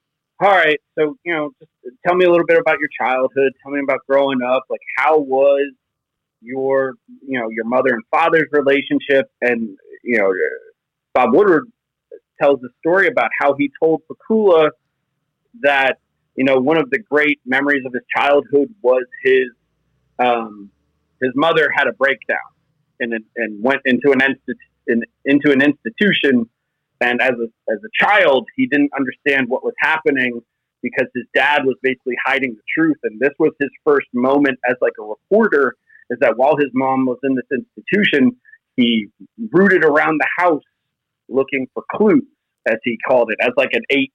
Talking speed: 170 wpm